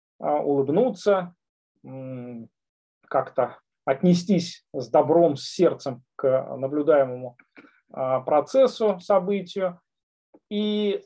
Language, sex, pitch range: Russian, male, 140-205 Hz